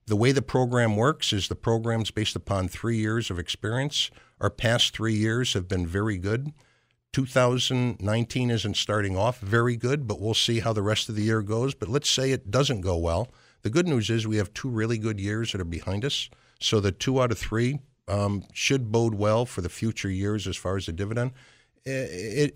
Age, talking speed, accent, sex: 60-79, 215 wpm, American, male